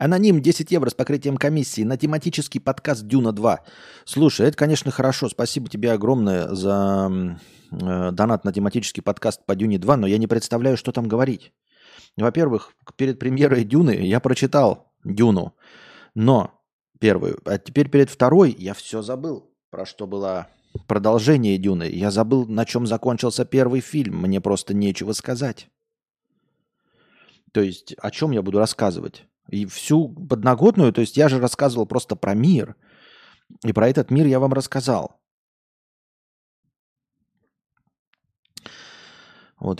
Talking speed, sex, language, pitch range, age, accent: 135 wpm, male, Russian, 110-145 Hz, 30-49, native